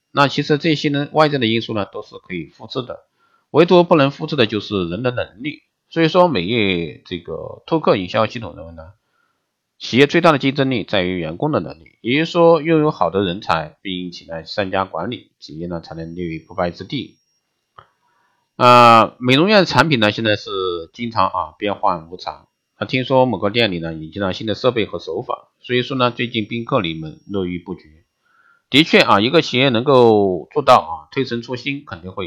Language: Chinese